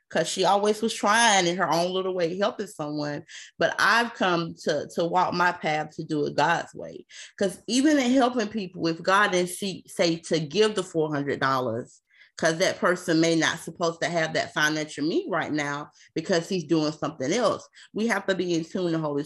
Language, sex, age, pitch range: English, female, 30-49, 150-190 Hz